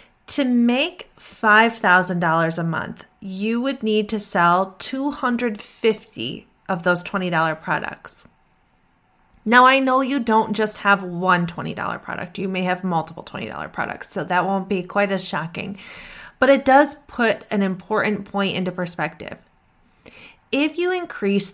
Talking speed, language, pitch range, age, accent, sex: 140 wpm, English, 185-235 Hz, 20-39, American, female